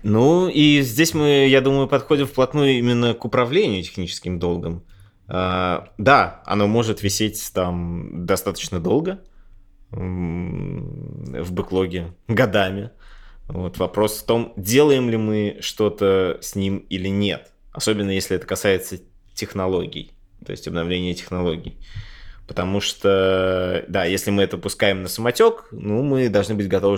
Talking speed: 130 wpm